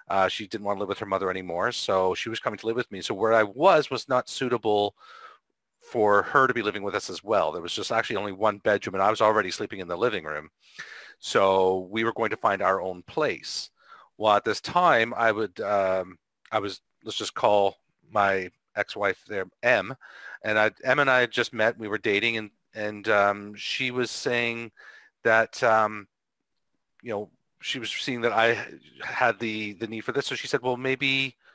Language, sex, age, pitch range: English, male, 40-59, 105-125 Hz